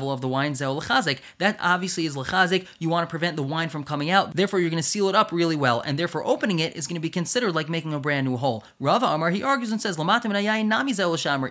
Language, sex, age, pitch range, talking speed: English, male, 20-39, 155-205 Hz, 250 wpm